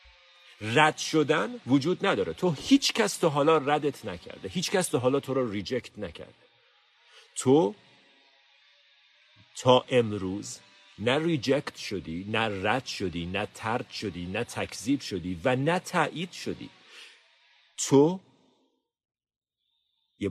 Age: 50-69